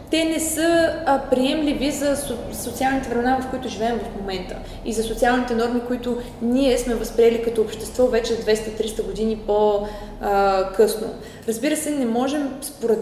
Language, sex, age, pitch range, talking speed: Bulgarian, female, 20-39, 205-240 Hz, 150 wpm